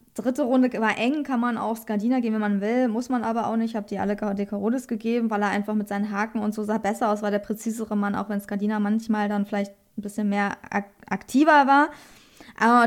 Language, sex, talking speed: German, female, 235 wpm